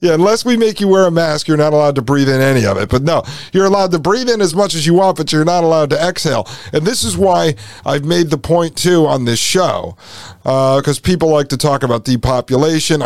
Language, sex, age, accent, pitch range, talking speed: English, male, 50-69, American, 130-165 Hz, 255 wpm